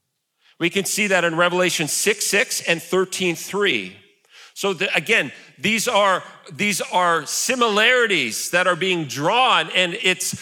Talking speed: 140 wpm